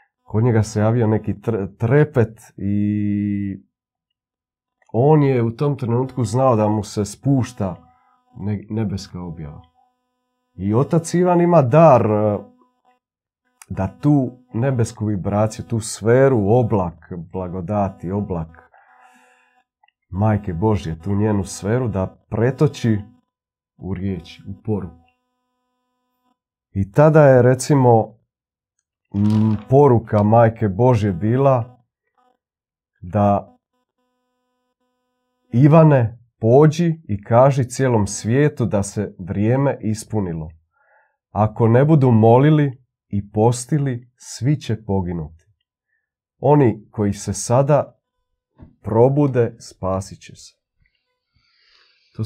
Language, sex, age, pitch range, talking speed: Croatian, male, 40-59, 100-140 Hz, 95 wpm